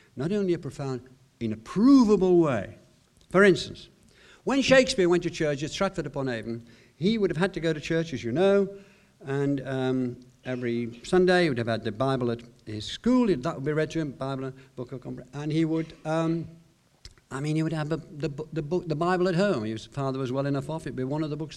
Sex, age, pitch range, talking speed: male, 60-79, 130-180 Hz, 215 wpm